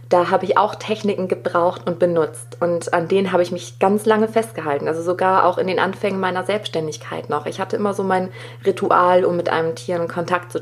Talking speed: 220 wpm